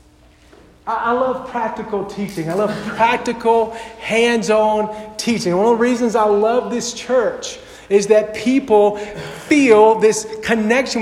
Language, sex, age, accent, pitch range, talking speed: English, male, 50-69, American, 215-275 Hz, 125 wpm